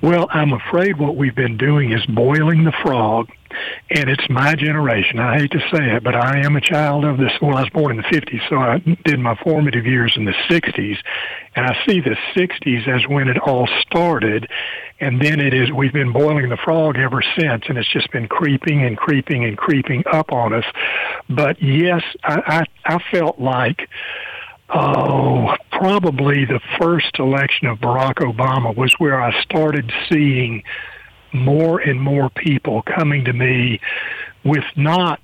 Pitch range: 125-155 Hz